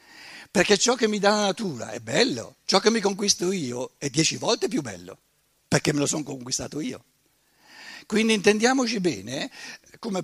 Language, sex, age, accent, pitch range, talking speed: Italian, male, 60-79, native, 145-205 Hz, 170 wpm